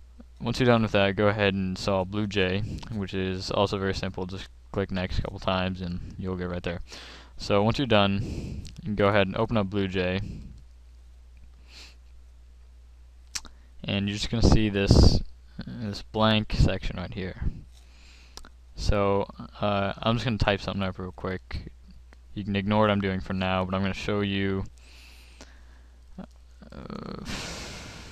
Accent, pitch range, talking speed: American, 65-100 Hz, 165 wpm